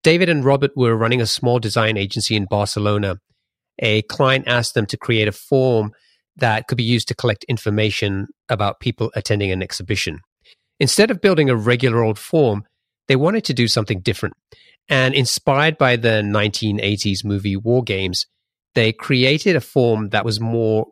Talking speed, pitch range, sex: 170 wpm, 105-130 Hz, male